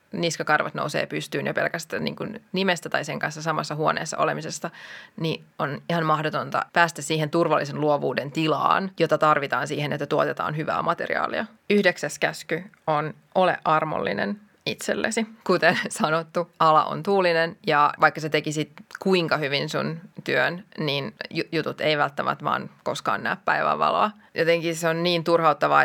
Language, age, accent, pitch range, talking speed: Finnish, 20-39, native, 155-190 Hz, 140 wpm